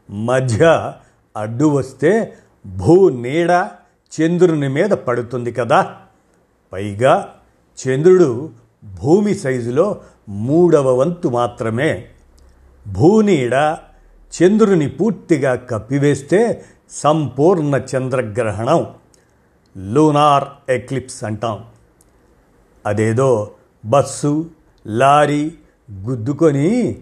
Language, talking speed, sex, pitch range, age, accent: Telugu, 65 wpm, male, 120-155 Hz, 50-69, native